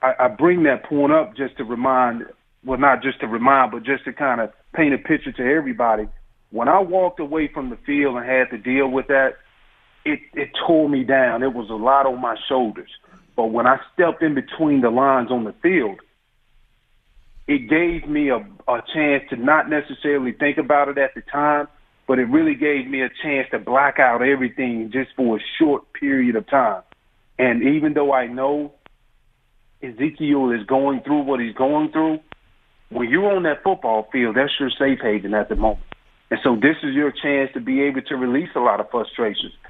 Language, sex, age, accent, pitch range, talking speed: English, male, 40-59, American, 125-150 Hz, 200 wpm